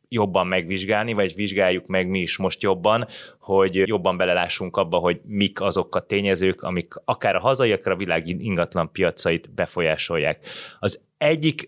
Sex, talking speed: male, 155 wpm